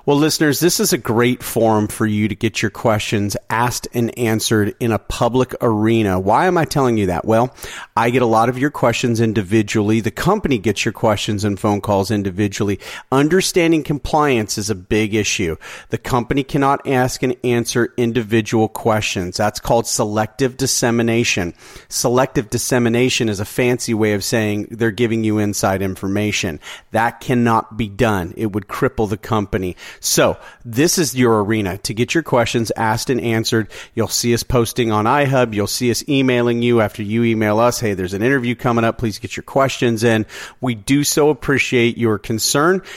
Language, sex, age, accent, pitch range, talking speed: English, male, 40-59, American, 110-130 Hz, 180 wpm